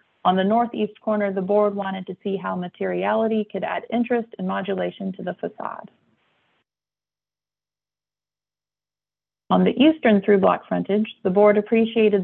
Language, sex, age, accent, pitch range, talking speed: English, female, 30-49, American, 195-225 Hz, 135 wpm